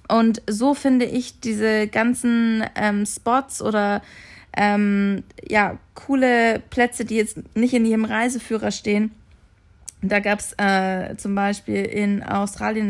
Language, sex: German, female